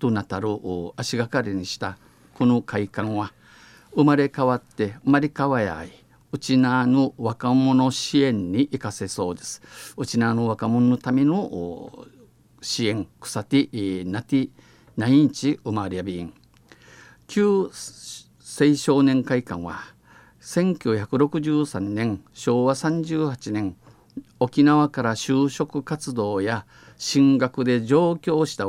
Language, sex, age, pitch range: Japanese, male, 50-69, 105-135 Hz